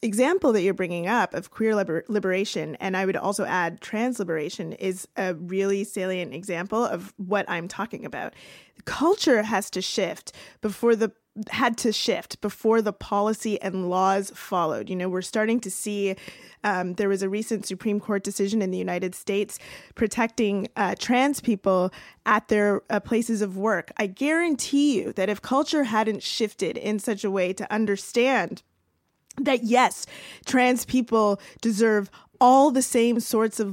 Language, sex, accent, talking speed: English, female, American, 165 wpm